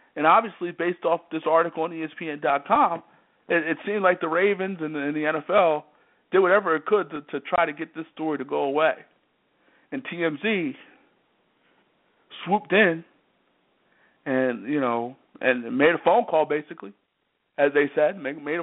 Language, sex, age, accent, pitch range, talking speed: English, male, 50-69, American, 145-190 Hz, 160 wpm